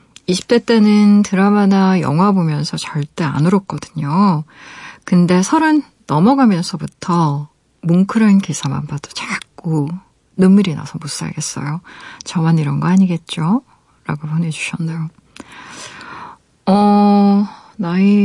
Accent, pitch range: native, 160-210 Hz